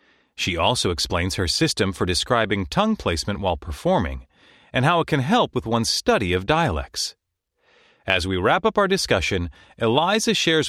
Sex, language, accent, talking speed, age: male, English, American, 165 wpm, 40-59